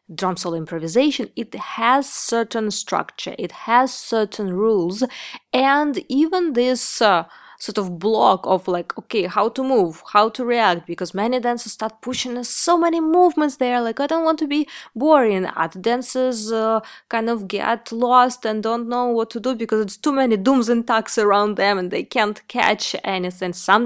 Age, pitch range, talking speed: 20-39, 190-245 Hz, 175 wpm